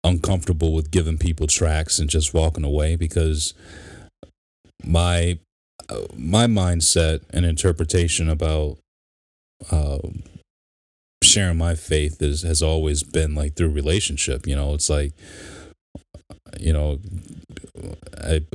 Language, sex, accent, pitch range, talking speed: English, male, American, 75-85 Hz, 110 wpm